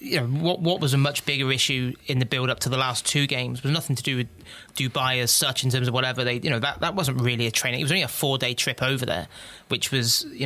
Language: English